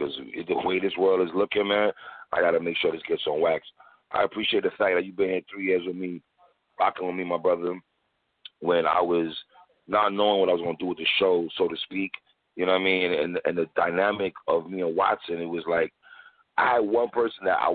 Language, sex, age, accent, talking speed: English, male, 30-49, American, 245 wpm